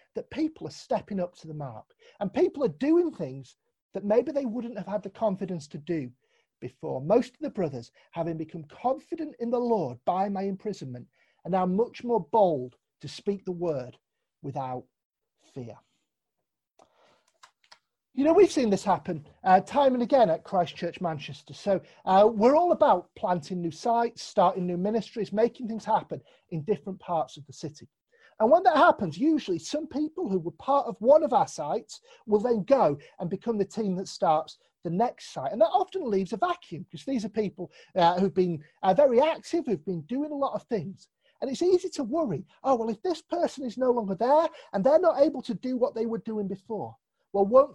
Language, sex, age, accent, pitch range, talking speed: English, male, 40-59, British, 175-275 Hz, 200 wpm